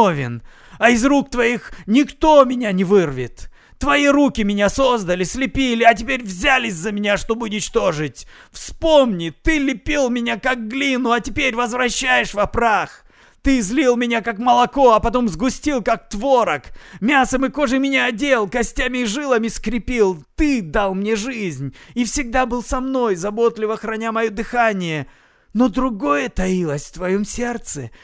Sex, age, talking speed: male, 30-49, 150 wpm